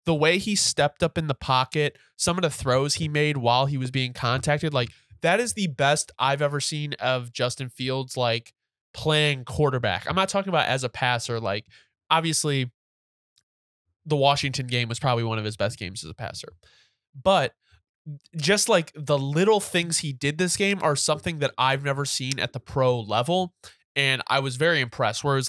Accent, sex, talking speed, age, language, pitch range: American, male, 190 wpm, 20-39, English, 125-160 Hz